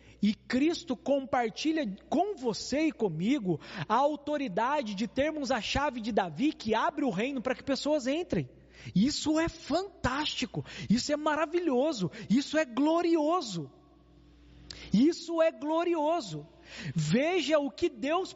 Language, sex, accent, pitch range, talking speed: Portuguese, male, Brazilian, 170-275 Hz, 130 wpm